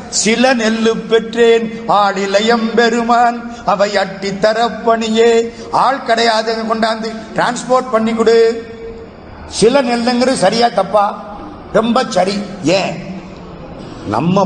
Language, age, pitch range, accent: Tamil, 50-69, 175-225 Hz, native